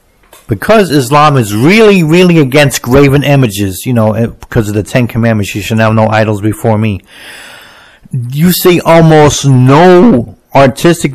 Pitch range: 115-145 Hz